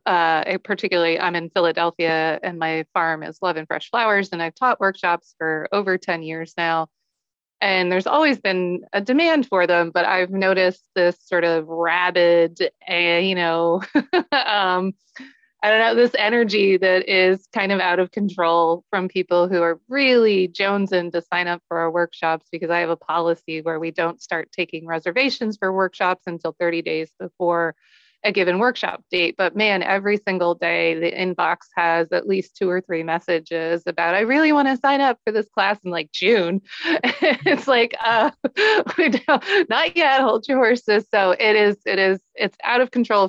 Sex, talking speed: female, 180 wpm